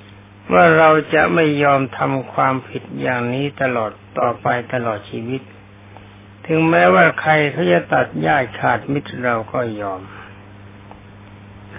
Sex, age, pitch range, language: male, 60-79, 100-135 Hz, Thai